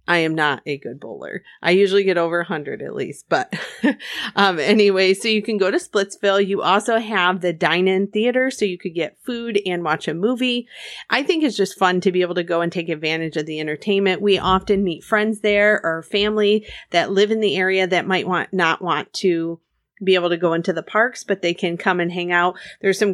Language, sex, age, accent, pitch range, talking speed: English, female, 30-49, American, 175-210 Hz, 225 wpm